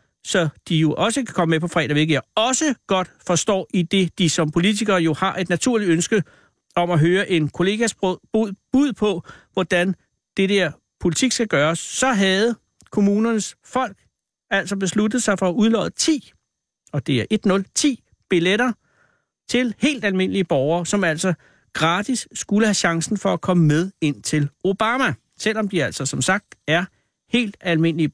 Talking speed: 170 wpm